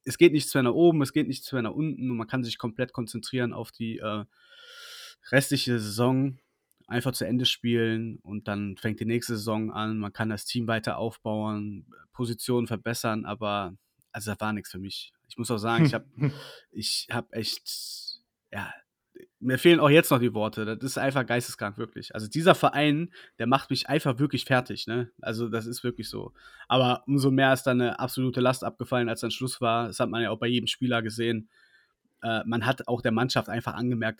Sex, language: male, German